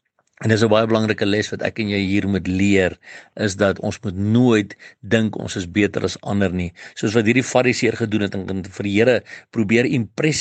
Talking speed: 220 wpm